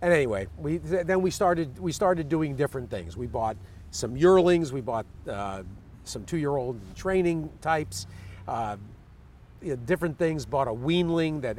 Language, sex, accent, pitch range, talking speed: English, male, American, 100-155 Hz, 160 wpm